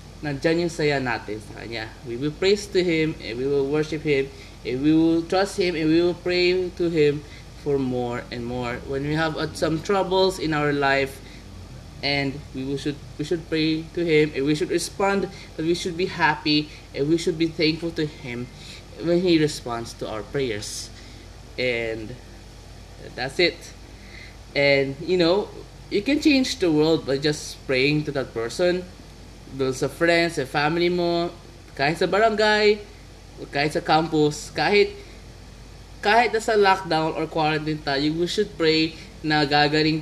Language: Filipino